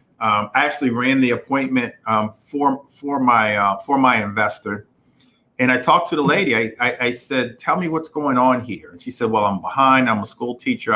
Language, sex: English, male